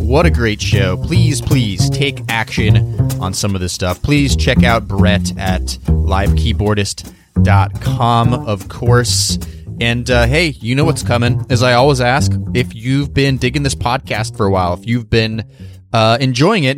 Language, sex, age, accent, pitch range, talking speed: English, male, 30-49, American, 100-130 Hz, 170 wpm